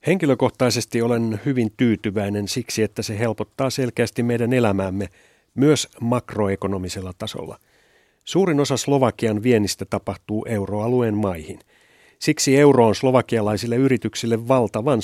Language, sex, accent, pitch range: Finnish, male, native, 105-125 Hz